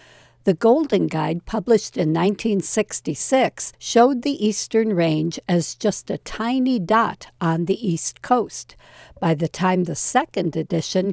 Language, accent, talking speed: English, American, 135 wpm